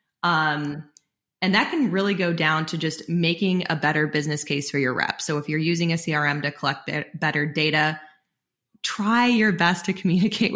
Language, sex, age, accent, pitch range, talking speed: English, female, 20-39, American, 155-175 Hz, 190 wpm